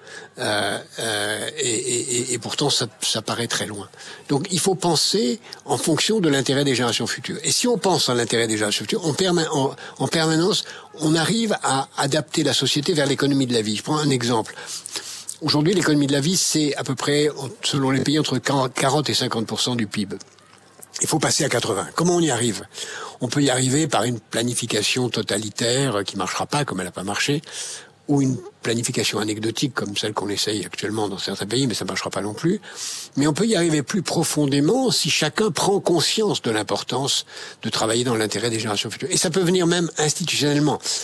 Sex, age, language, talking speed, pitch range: male, 60-79, French, 205 wpm, 115-160 Hz